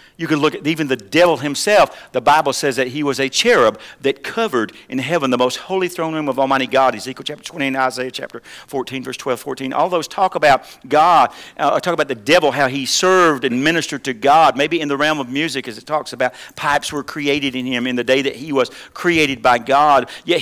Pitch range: 135-170 Hz